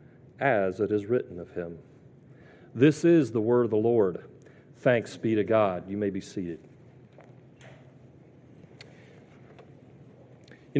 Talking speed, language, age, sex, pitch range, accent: 120 wpm, English, 40-59, male, 120-150 Hz, American